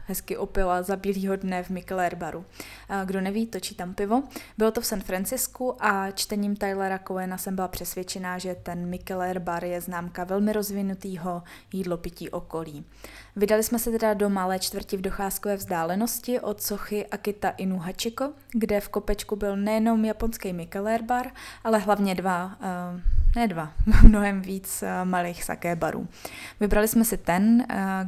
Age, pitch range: 20-39, 180-210 Hz